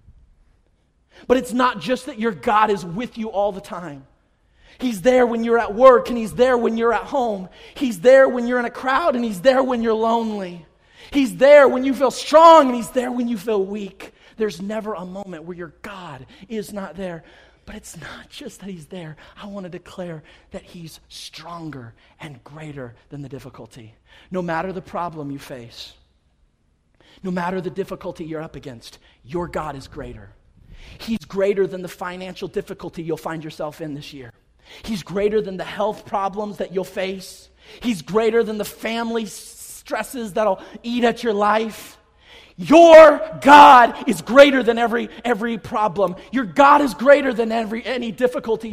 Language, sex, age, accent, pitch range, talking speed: English, male, 30-49, American, 175-245 Hz, 180 wpm